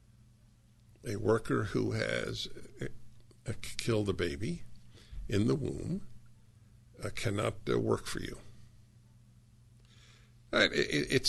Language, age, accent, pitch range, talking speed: English, 60-79, American, 110-125 Hz, 80 wpm